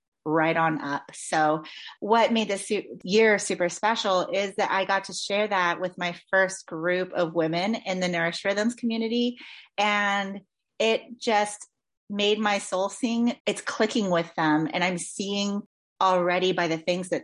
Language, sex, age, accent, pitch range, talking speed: English, female, 30-49, American, 175-220 Hz, 165 wpm